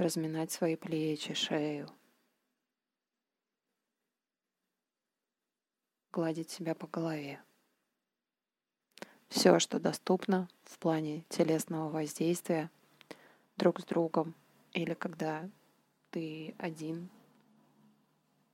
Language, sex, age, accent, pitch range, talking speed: Russian, female, 20-39, native, 155-180 Hz, 70 wpm